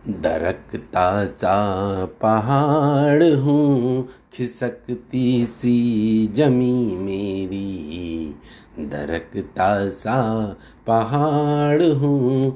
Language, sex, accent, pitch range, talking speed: Hindi, male, native, 100-130 Hz, 55 wpm